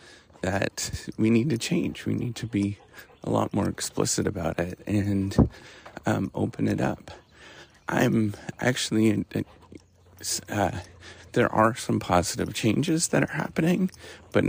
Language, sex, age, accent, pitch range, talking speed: English, male, 40-59, American, 90-110 Hz, 135 wpm